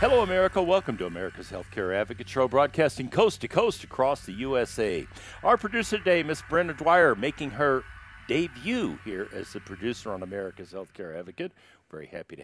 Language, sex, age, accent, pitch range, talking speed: English, male, 60-79, American, 120-160 Hz, 160 wpm